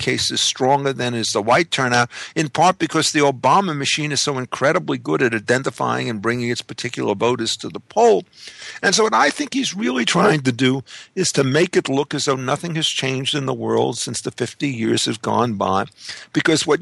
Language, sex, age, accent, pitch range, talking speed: English, male, 50-69, American, 130-165 Hz, 215 wpm